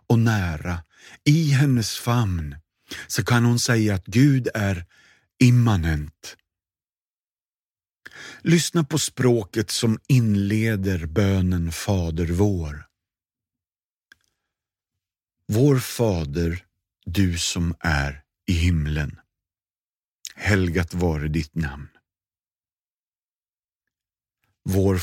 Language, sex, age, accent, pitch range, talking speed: Swedish, male, 50-69, native, 90-135 Hz, 80 wpm